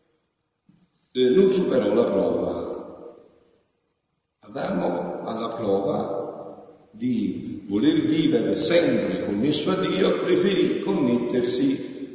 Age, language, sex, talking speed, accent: 60-79, Italian, male, 85 wpm, native